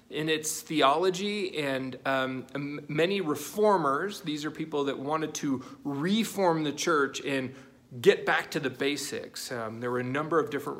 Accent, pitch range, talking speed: American, 140-185 Hz, 155 wpm